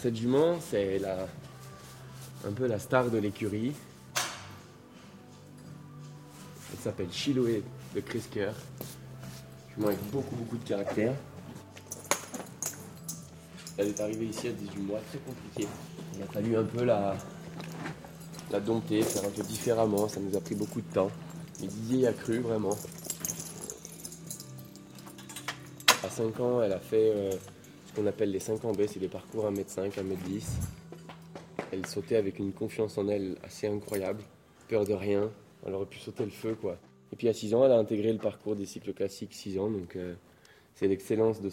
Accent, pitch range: French, 95-115 Hz